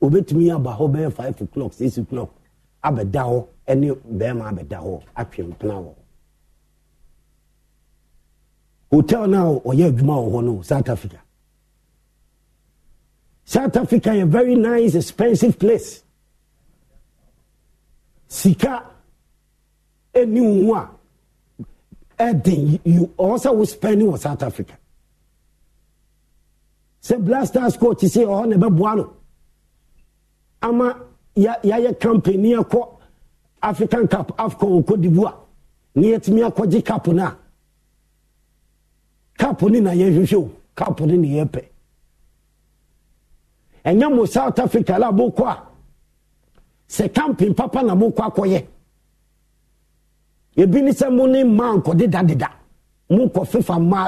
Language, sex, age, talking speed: English, male, 50-69, 110 wpm